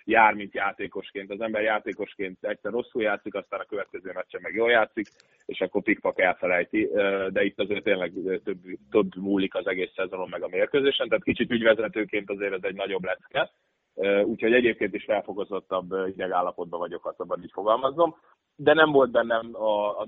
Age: 30-49